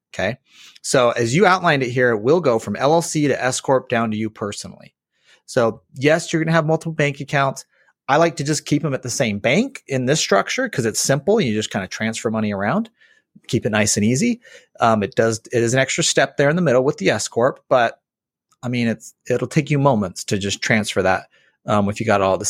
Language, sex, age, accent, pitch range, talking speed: English, male, 30-49, American, 115-165 Hz, 235 wpm